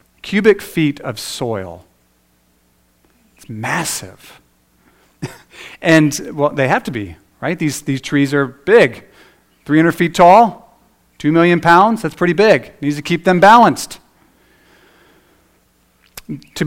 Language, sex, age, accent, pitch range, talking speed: English, male, 40-59, American, 100-165 Hz, 120 wpm